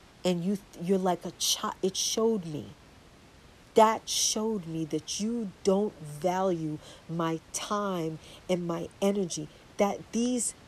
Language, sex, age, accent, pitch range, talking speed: English, female, 40-59, American, 170-230 Hz, 130 wpm